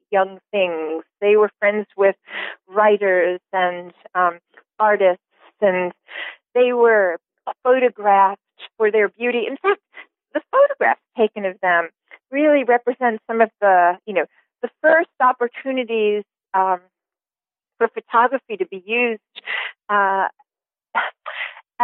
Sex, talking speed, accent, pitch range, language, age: female, 115 wpm, American, 185-245 Hz, English, 40-59